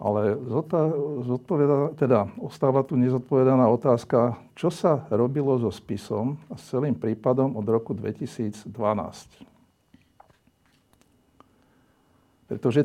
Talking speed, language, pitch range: 85 wpm, Slovak, 115-135 Hz